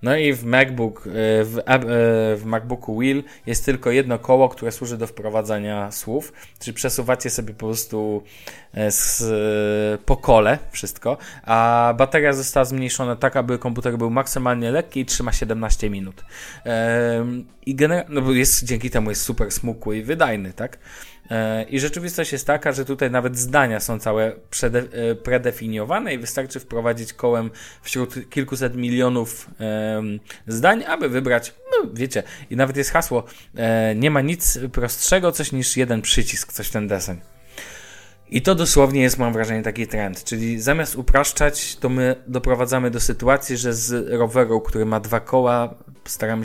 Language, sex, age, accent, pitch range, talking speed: Polish, male, 20-39, native, 110-130 Hz, 145 wpm